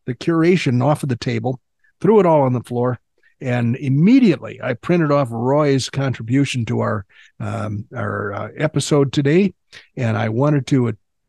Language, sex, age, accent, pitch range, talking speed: English, male, 60-79, American, 120-155 Hz, 160 wpm